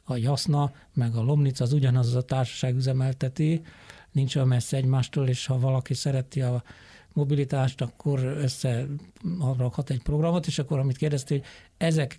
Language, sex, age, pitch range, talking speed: Hungarian, male, 60-79, 125-145 Hz, 155 wpm